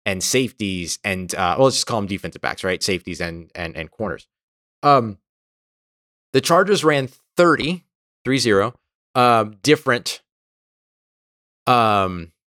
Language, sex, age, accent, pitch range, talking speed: English, male, 30-49, American, 105-145 Hz, 125 wpm